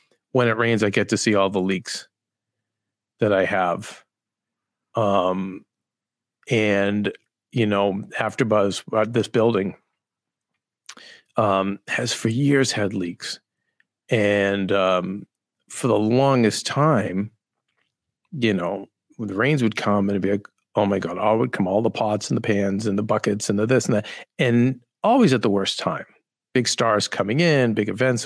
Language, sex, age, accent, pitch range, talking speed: English, male, 40-59, American, 105-135 Hz, 165 wpm